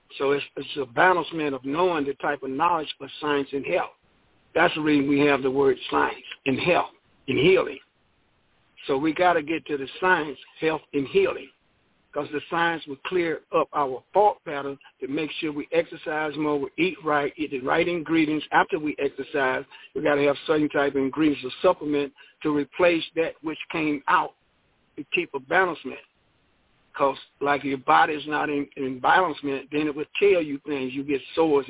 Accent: American